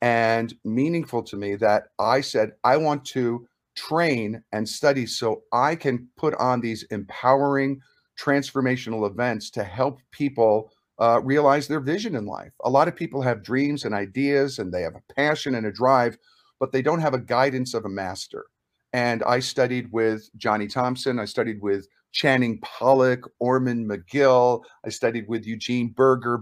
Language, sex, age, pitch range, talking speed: English, male, 50-69, 115-140 Hz, 170 wpm